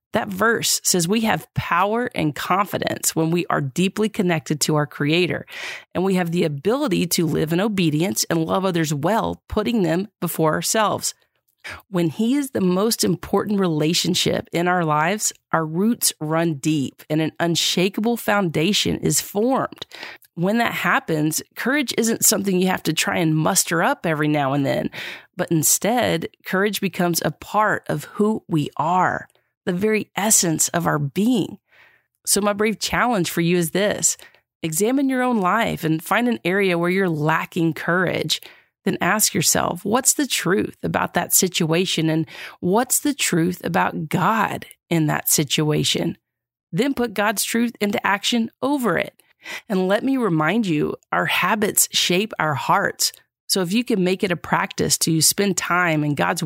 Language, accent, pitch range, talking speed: English, American, 160-215 Hz, 165 wpm